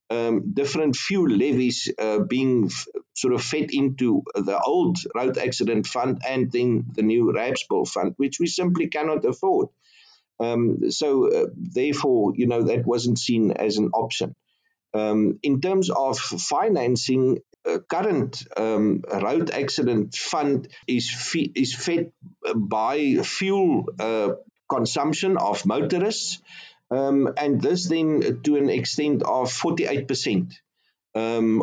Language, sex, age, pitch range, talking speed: English, male, 50-69, 115-170 Hz, 130 wpm